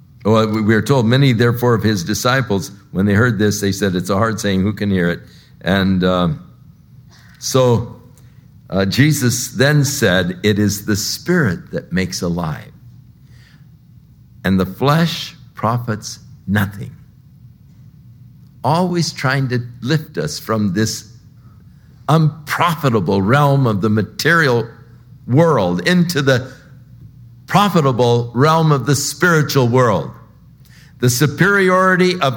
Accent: American